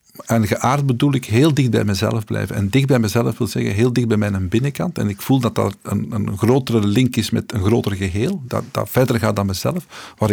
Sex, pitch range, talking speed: male, 105-130 Hz, 240 wpm